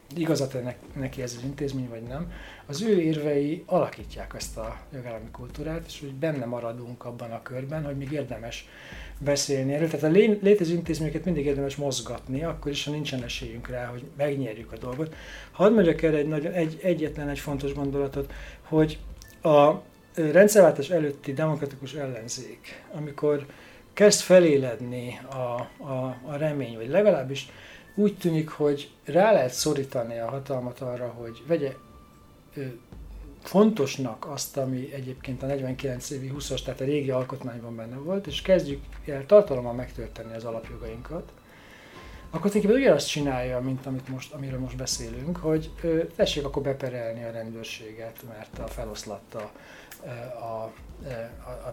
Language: Hungarian